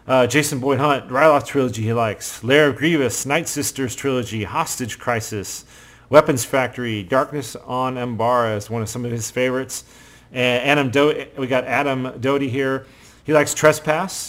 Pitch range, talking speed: 120-145 Hz, 160 wpm